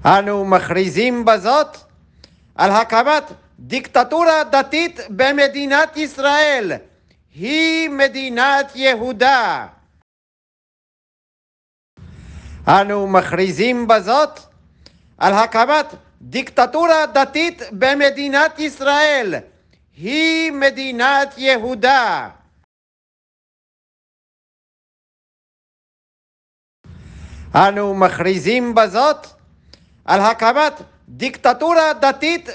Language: Hebrew